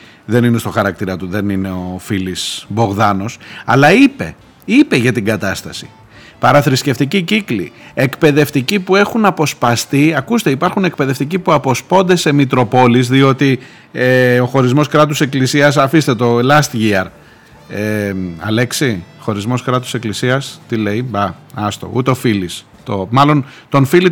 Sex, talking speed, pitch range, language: male, 135 wpm, 115-170 Hz, Greek